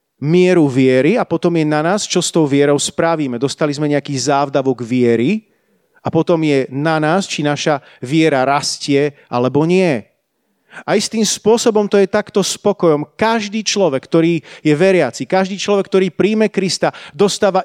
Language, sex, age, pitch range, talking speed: Slovak, male, 40-59, 150-200 Hz, 155 wpm